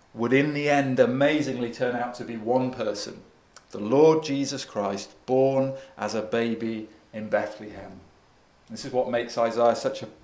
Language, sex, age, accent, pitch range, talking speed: English, male, 40-59, British, 120-155 Hz, 165 wpm